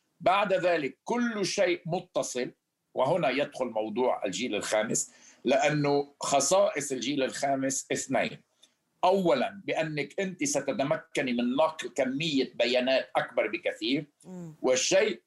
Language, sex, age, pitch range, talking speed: Arabic, male, 50-69, 135-185 Hz, 100 wpm